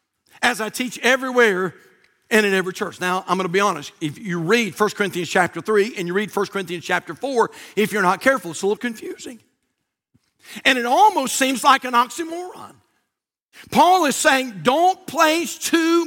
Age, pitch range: 50-69, 210-305 Hz